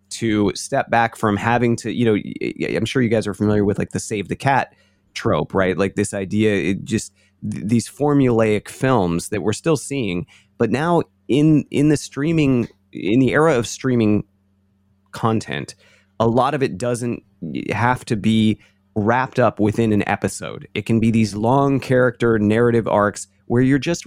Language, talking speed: English, 175 wpm